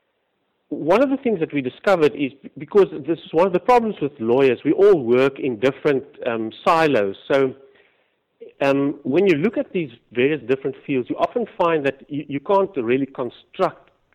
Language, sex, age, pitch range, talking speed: English, male, 50-69, 130-165 Hz, 180 wpm